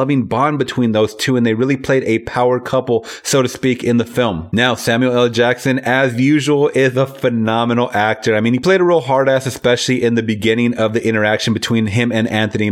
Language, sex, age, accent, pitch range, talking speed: English, male, 30-49, American, 115-140 Hz, 215 wpm